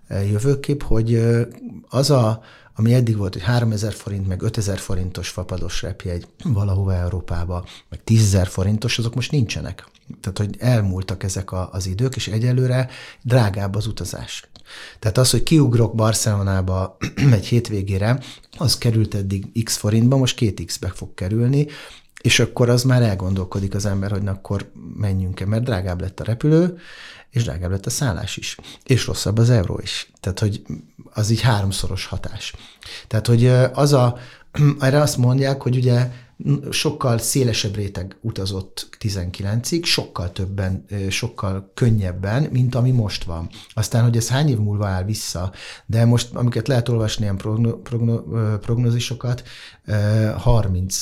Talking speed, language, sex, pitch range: 145 wpm, Hungarian, male, 95-120 Hz